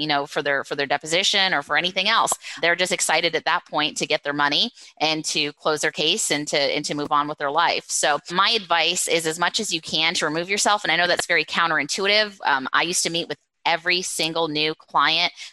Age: 20-39